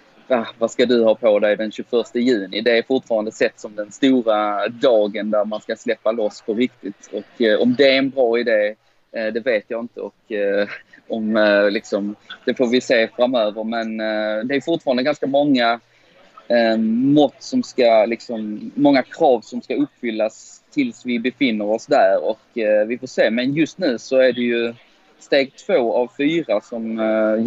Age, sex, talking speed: 20-39, male, 190 wpm